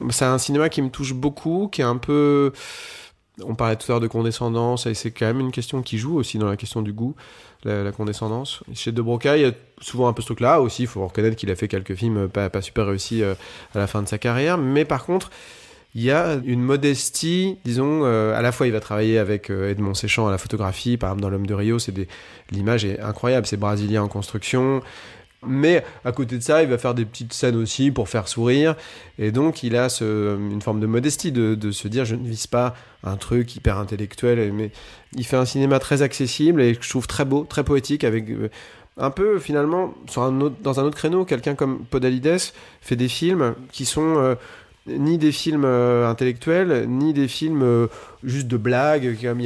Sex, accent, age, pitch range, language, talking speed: male, French, 30-49, 110-140 Hz, French, 225 wpm